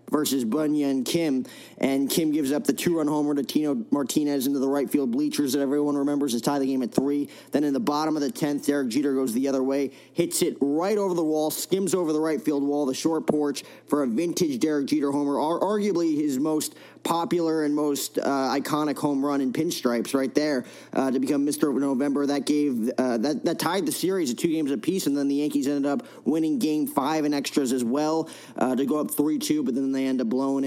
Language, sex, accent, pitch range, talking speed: English, male, American, 135-170 Hz, 225 wpm